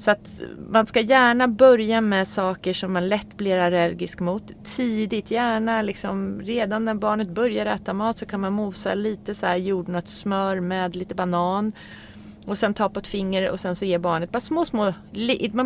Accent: native